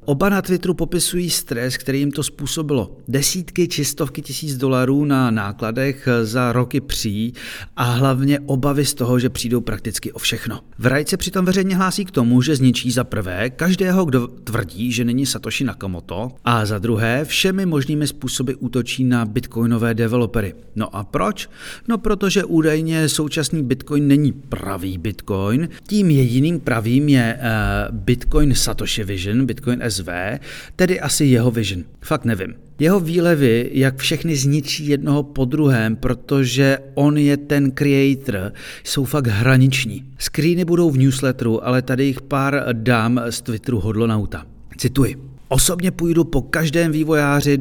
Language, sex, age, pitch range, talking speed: Czech, male, 40-59, 115-150 Hz, 150 wpm